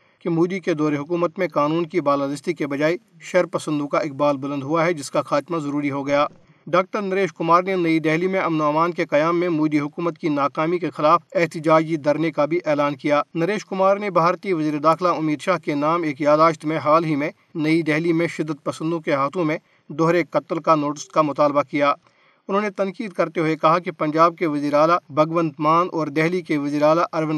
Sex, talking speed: male, 210 wpm